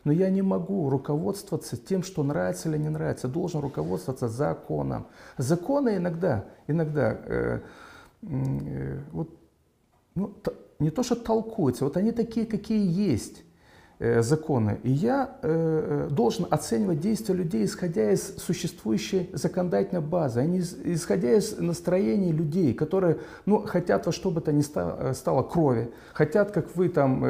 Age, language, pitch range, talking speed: 40-59, Romanian, 145-205 Hz, 140 wpm